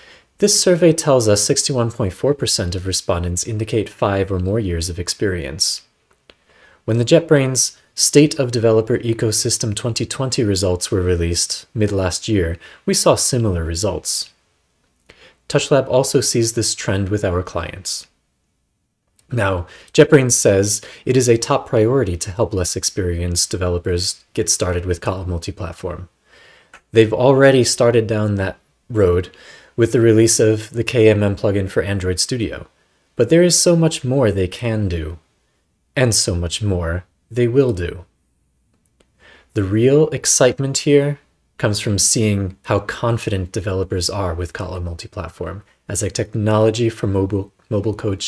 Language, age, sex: English, 30-49, male